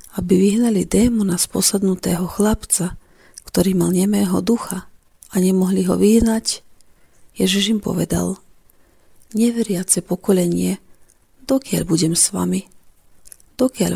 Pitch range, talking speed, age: 180-215 Hz, 105 wpm, 40-59